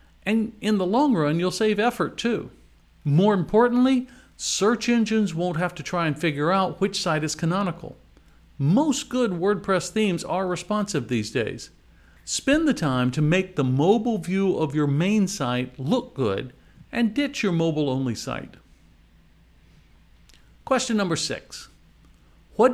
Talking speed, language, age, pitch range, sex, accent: 145 wpm, English, 50-69, 130-200 Hz, male, American